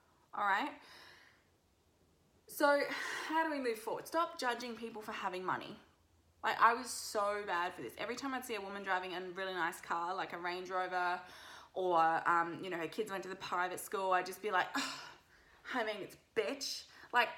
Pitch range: 185-250 Hz